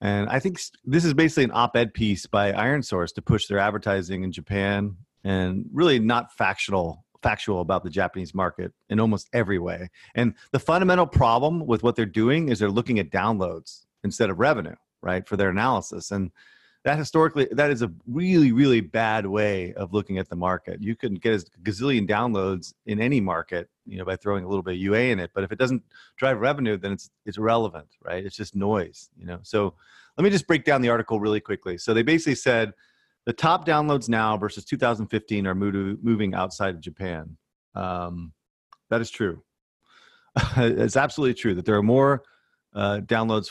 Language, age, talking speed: English, 30-49, 195 wpm